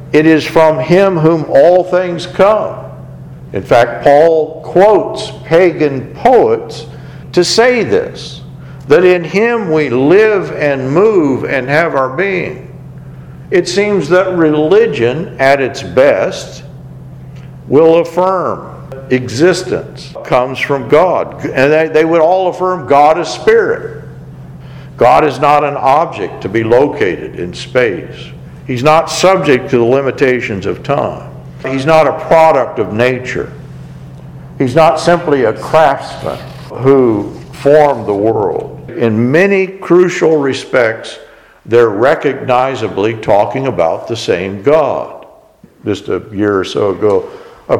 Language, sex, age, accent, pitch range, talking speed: English, male, 60-79, American, 135-180 Hz, 125 wpm